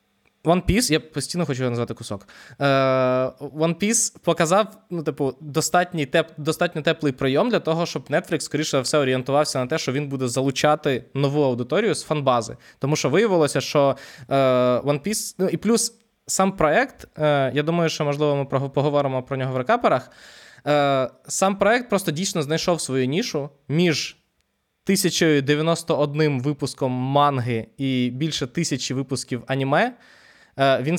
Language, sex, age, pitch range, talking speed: Ukrainian, male, 20-39, 130-165 Hz, 140 wpm